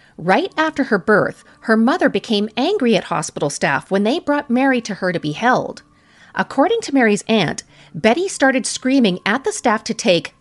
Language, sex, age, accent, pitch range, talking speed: English, female, 40-59, American, 185-255 Hz, 185 wpm